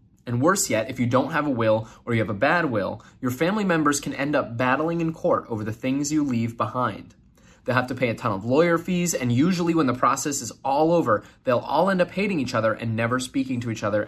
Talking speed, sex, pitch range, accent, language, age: 255 wpm, male, 115-160 Hz, American, English, 20-39